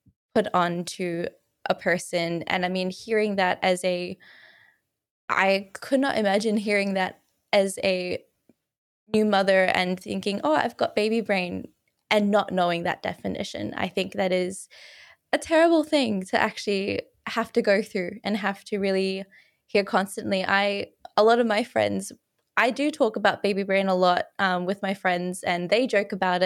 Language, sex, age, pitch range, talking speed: English, female, 10-29, 190-230 Hz, 170 wpm